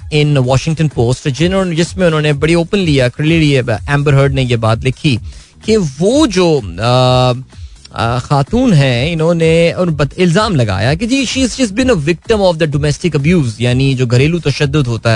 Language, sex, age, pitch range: Hindi, male, 20-39, 125-165 Hz